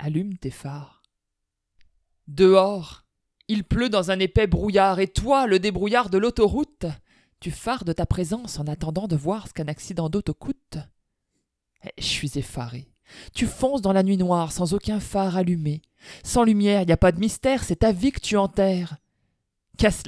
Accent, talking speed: French, 175 wpm